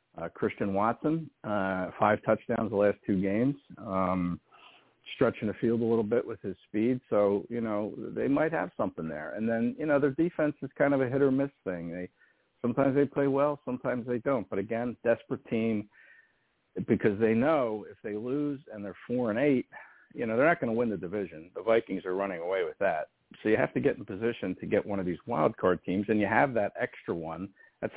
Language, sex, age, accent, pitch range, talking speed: English, male, 50-69, American, 105-140 Hz, 220 wpm